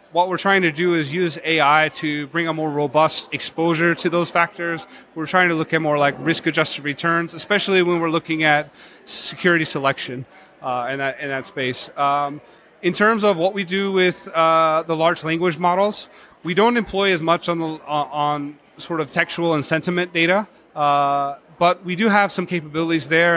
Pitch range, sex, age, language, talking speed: 150-175 Hz, male, 30-49, English, 195 wpm